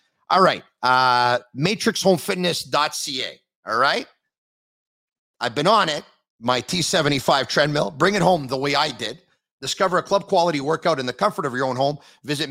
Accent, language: American, English